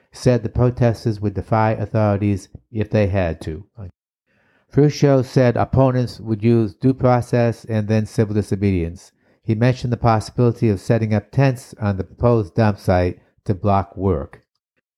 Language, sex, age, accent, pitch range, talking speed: English, male, 60-79, American, 100-120 Hz, 150 wpm